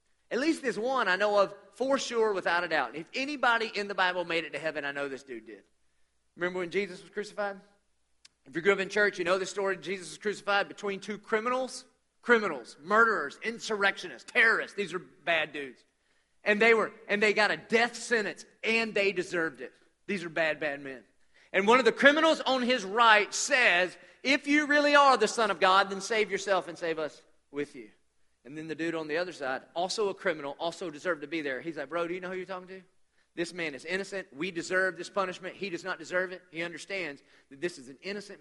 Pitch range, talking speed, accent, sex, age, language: 165-215 Hz, 225 wpm, American, male, 40-59, English